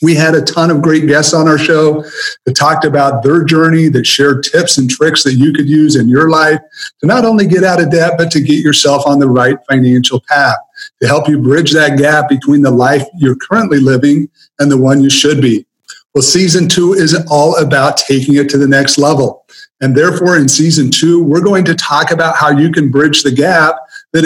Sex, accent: male, American